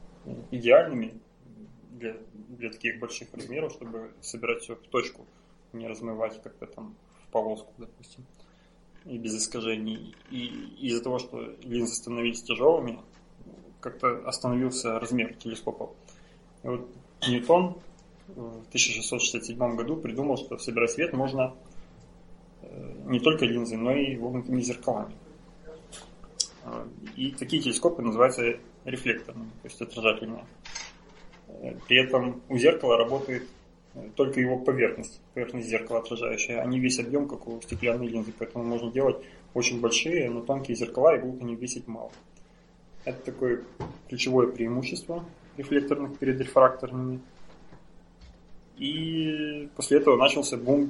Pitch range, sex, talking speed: 115-130 Hz, male, 120 wpm